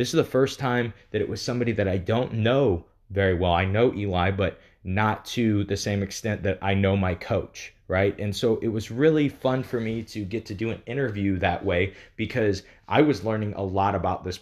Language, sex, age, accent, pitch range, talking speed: English, male, 20-39, American, 100-125 Hz, 225 wpm